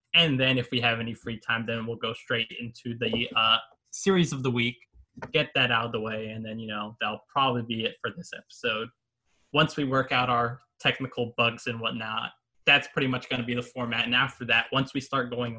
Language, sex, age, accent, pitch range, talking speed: English, male, 20-39, American, 115-135 Hz, 230 wpm